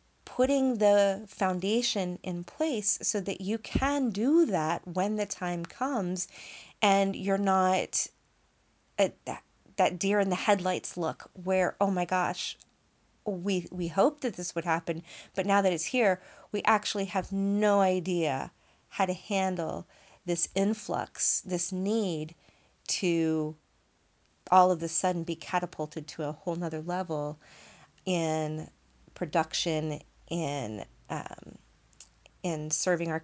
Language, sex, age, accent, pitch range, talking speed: English, female, 30-49, American, 170-205 Hz, 130 wpm